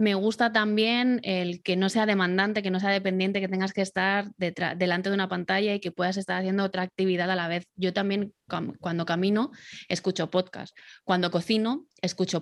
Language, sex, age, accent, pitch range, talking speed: Spanish, female, 20-39, Spanish, 175-210 Hz, 200 wpm